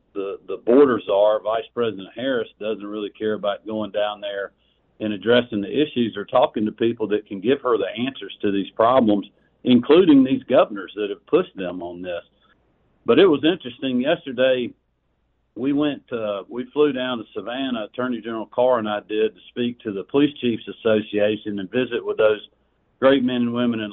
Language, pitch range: English, 105-125 Hz